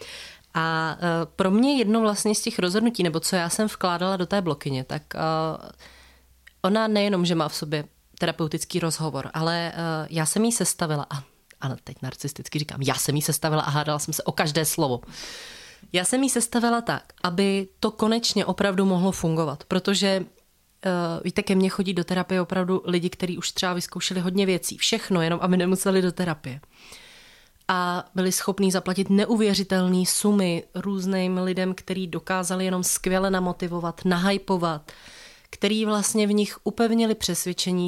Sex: female